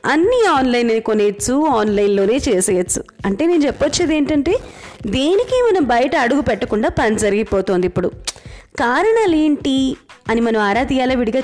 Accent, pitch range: native, 220-310 Hz